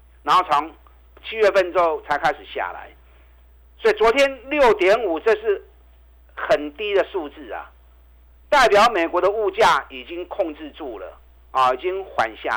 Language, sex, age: Chinese, male, 50-69